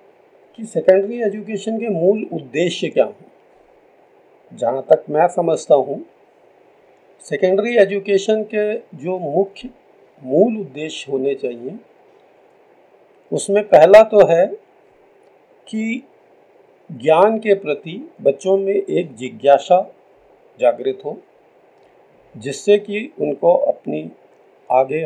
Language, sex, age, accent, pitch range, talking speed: Hindi, male, 50-69, native, 155-225 Hz, 100 wpm